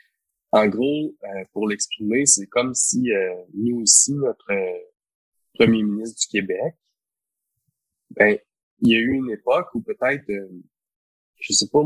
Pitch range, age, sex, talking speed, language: 100-135 Hz, 20-39, male, 150 wpm, English